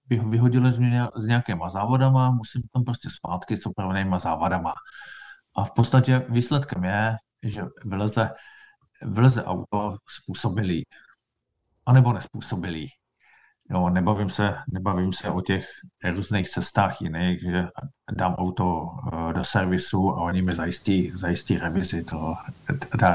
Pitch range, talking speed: 95-125 Hz, 120 wpm